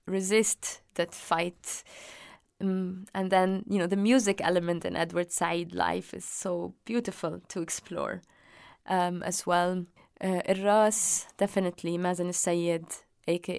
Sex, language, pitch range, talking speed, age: female, English, 175-200 Hz, 130 wpm, 20-39